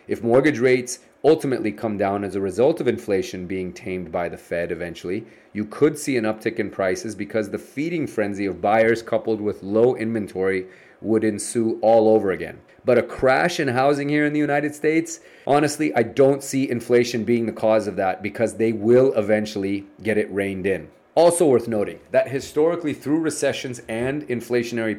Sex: male